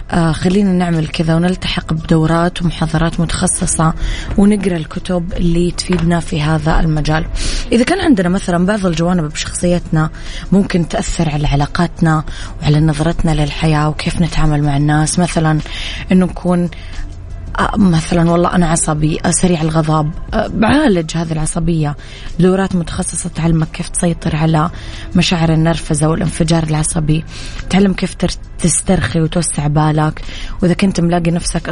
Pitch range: 155-180 Hz